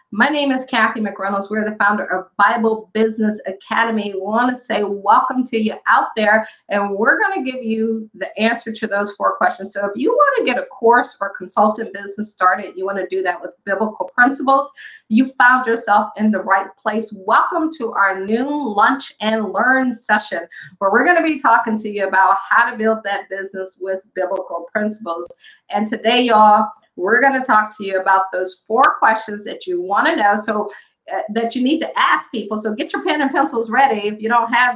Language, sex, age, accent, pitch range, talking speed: English, female, 50-69, American, 205-255 Hz, 210 wpm